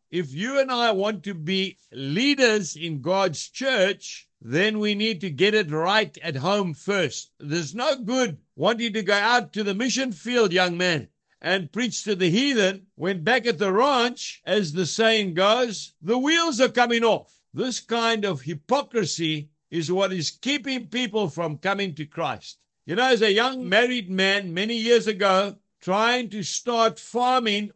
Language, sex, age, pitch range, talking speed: English, male, 60-79, 180-235 Hz, 175 wpm